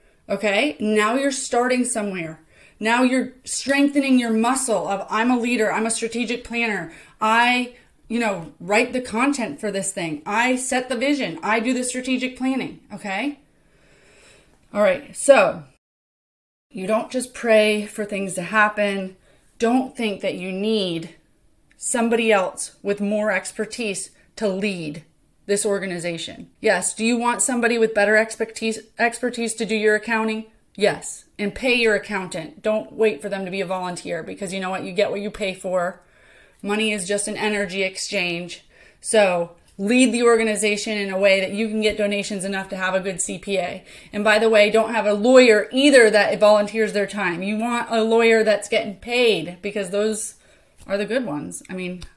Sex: female